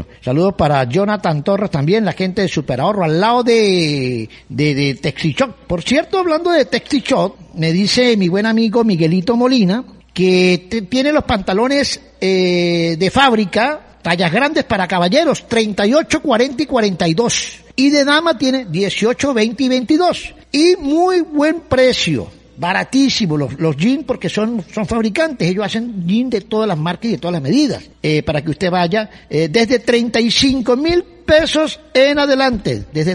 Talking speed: 155 wpm